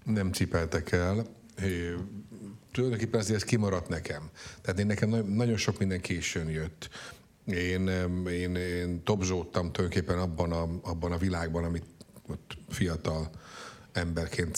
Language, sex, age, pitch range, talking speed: Hungarian, male, 50-69, 85-100 Hz, 115 wpm